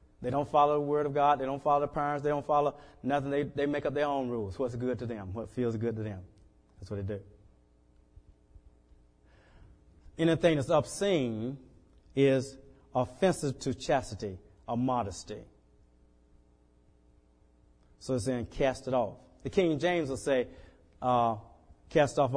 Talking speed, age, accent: 160 wpm, 30-49, American